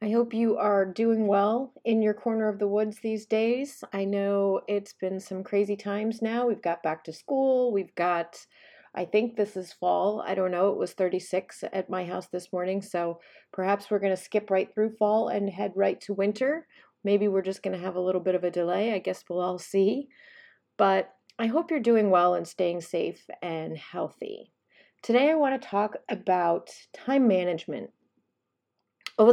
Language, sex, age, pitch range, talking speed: English, female, 30-49, 180-225 Hz, 190 wpm